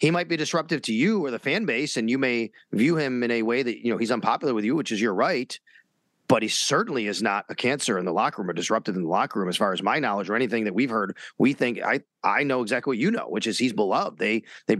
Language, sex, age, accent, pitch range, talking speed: English, male, 30-49, American, 120-145 Hz, 290 wpm